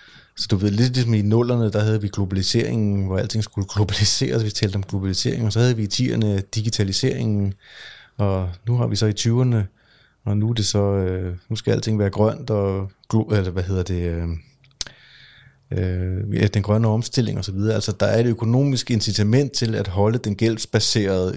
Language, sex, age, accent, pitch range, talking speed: Danish, male, 30-49, native, 100-120 Hz, 185 wpm